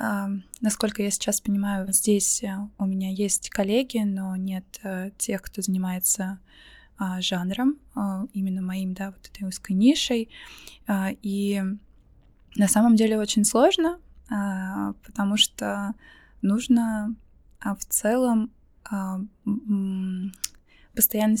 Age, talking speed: 20-39, 120 wpm